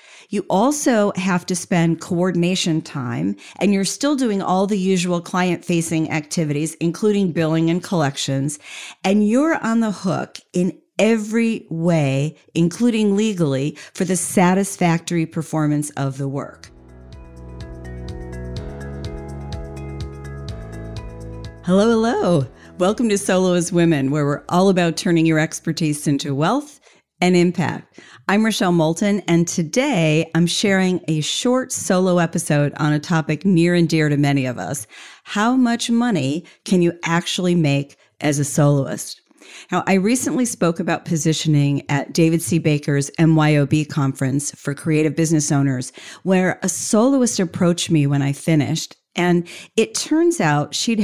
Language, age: English, 50-69